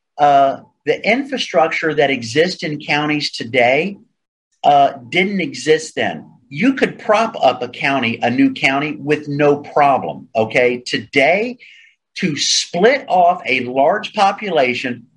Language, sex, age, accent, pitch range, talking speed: English, male, 40-59, American, 145-195 Hz, 125 wpm